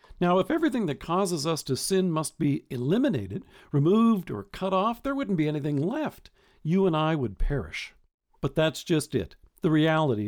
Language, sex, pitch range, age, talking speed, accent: English, male, 135-190 Hz, 50-69, 180 wpm, American